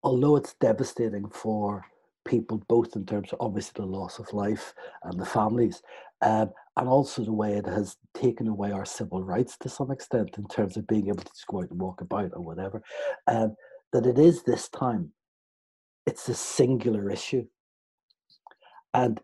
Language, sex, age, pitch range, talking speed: English, male, 60-79, 95-120 Hz, 180 wpm